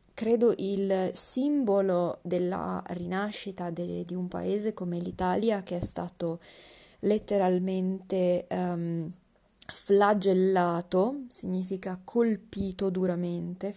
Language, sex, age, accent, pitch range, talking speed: Italian, female, 30-49, native, 175-205 Hz, 85 wpm